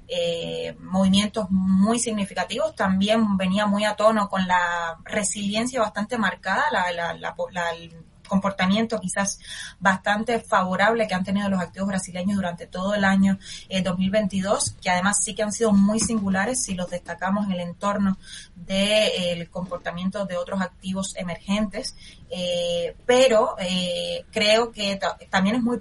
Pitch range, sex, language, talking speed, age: 180-210 Hz, female, Spanish, 155 wpm, 20-39